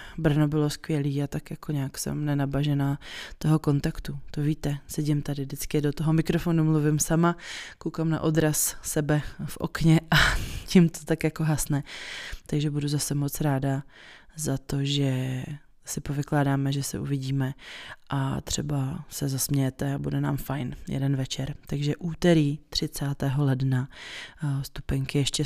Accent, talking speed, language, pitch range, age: native, 145 wpm, Czech, 140-155 Hz, 20-39